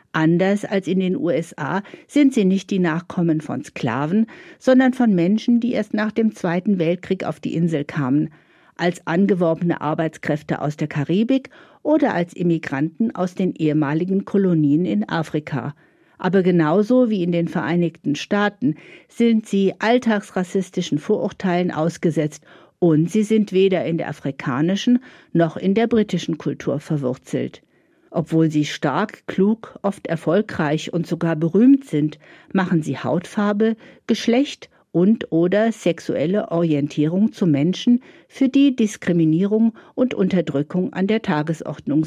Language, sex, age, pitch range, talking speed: German, female, 50-69, 160-220 Hz, 135 wpm